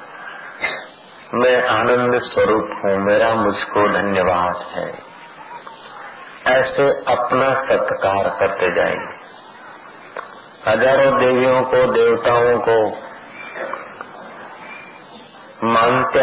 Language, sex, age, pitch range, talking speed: Hindi, male, 50-69, 105-130 Hz, 70 wpm